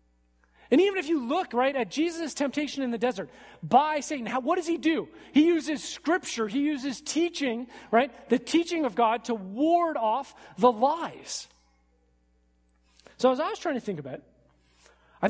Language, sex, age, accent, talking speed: English, male, 30-49, American, 175 wpm